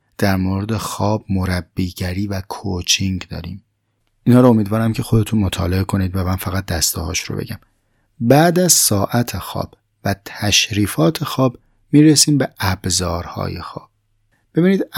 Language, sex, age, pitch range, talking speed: Persian, male, 30-49, 95-115 Hz, 130 wpm